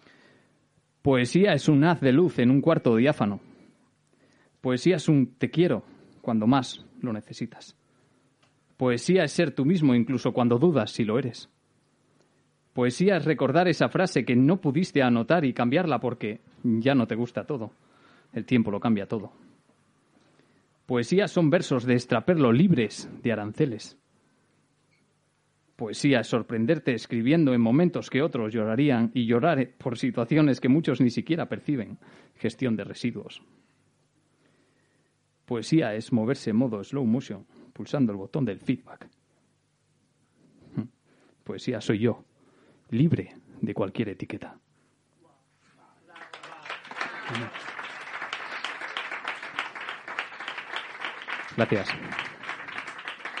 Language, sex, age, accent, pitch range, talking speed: Spanish, male, 30-49, Spanish, 120-155 Hz, 115 wpm